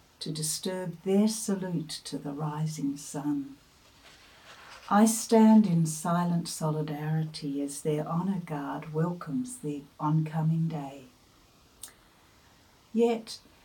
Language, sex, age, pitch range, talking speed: English, female, 60-79, 155-220 Hz, 95 wpm